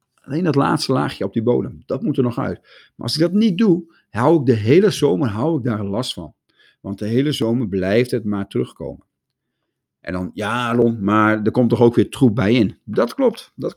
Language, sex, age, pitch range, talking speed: Dutch, male, 50-69, 105-155 Hz, 225 wpm